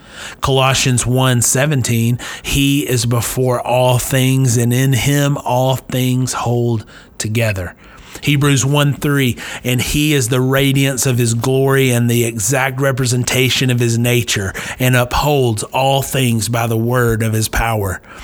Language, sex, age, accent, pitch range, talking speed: English, male, 30-49, American, 115-140 Hz, 140 wpm